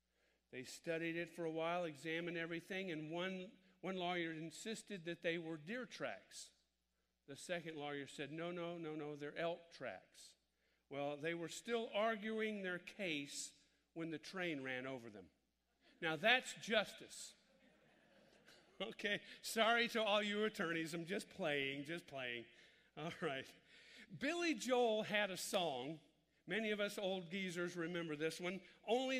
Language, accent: English, American